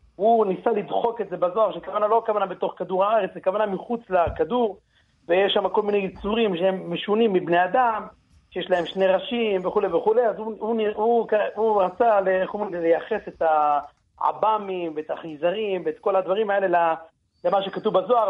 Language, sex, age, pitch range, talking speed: Hebrew, male, 40-59, 175-215 Hz, 165 wpm